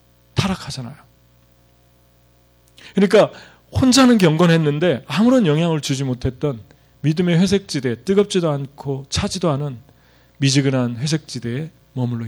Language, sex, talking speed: English, male, 85 wpm